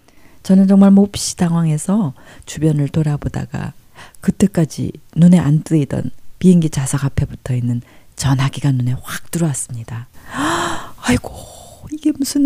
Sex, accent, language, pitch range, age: female, native, Korean, 140-200 Hz, 40-59